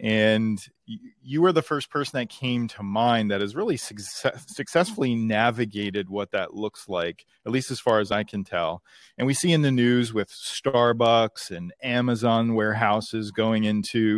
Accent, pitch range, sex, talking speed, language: American, 105-125 Hz, male, 175 wpm, English